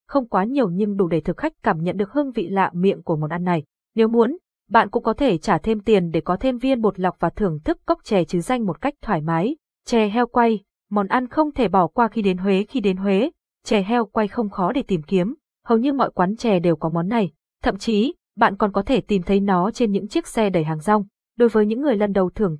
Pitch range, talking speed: 185-235 Hz, 265 wpm